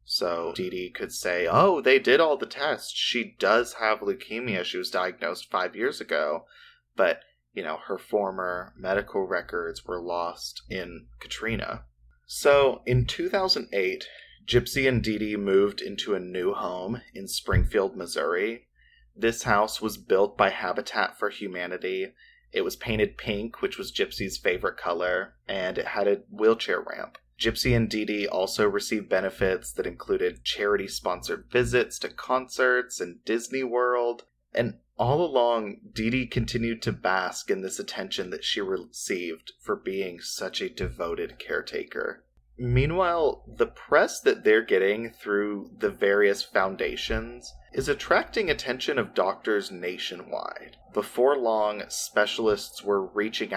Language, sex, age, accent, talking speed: English, male, 30-49, American, 140 wpm